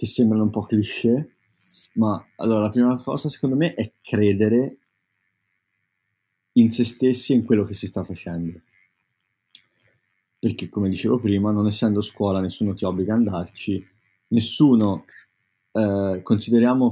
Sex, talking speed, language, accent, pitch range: male, 140 wpm, Italian, native, 95-115 Hz